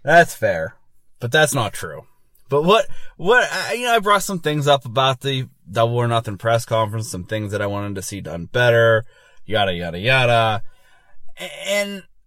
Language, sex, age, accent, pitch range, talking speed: English, male, 20-39, American, 115-155 Hz, 180 wpm